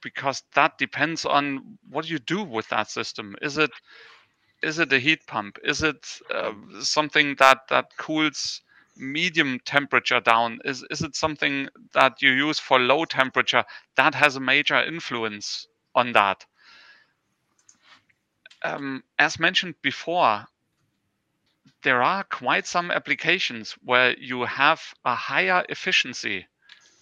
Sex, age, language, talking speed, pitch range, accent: male, 40-59, English, 130 wpm, 125-155 Hz, German